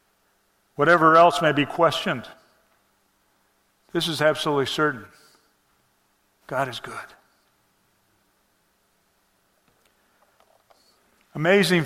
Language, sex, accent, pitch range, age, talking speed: English, male, American, 130-150 Hz, 50-69, 65 wpm